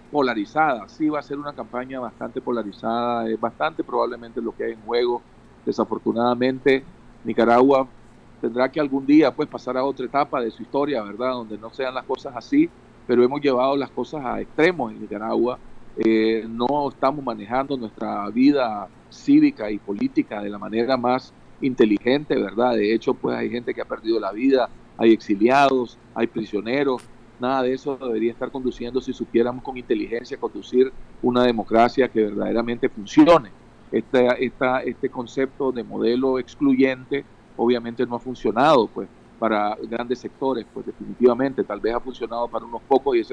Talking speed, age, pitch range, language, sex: 160 wpm, 40-59, 115-135 Hz, Spanish, male